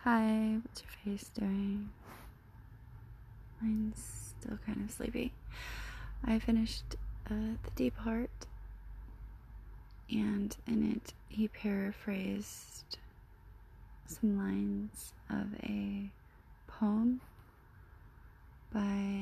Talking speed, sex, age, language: 85 wpm, female, 20-39, English